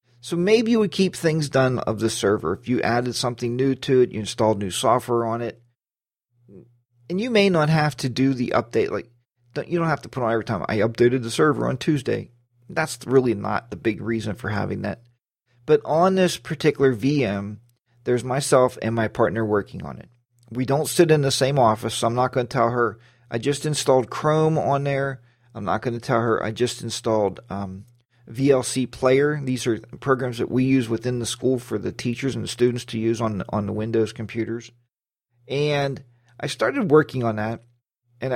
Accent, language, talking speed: American, English, 205 wpm